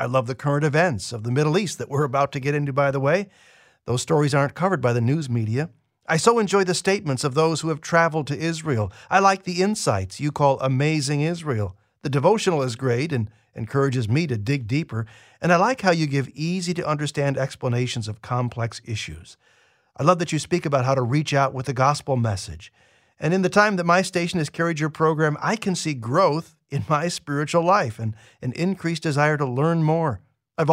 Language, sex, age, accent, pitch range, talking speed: English, male, 50-69, American, 125-165 Hz, 210 wpm